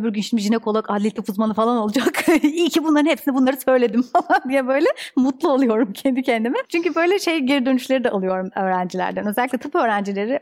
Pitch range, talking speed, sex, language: 195-265 Hz, 190 wpm, female, Turkish